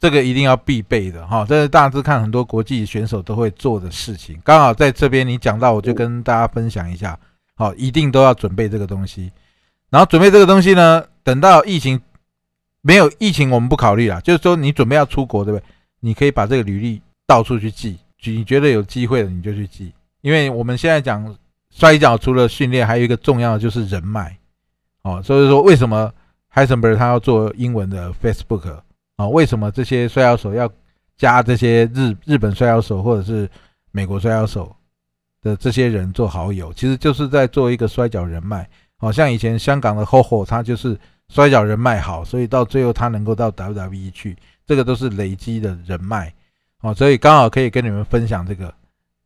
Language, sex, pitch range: Chinese, male, 100-130 Hz